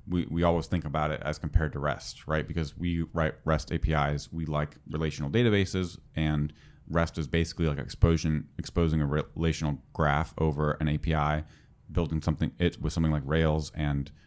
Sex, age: male, 30-49